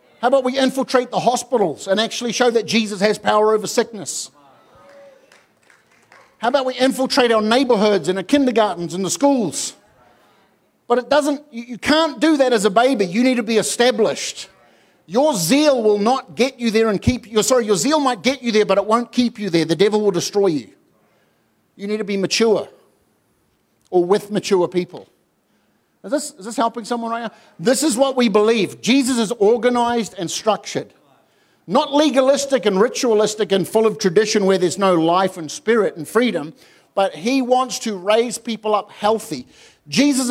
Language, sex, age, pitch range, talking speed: English, male, 50-69, 205-255 Hz, 180 wpm